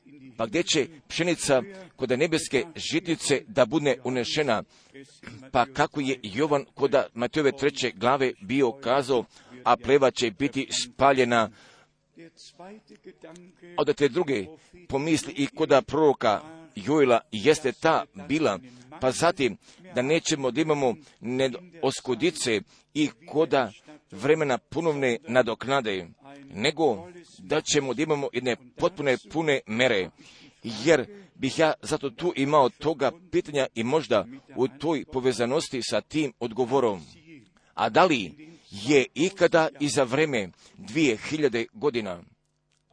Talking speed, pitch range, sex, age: 115 wpm, 130-160 Hz, male, 50-69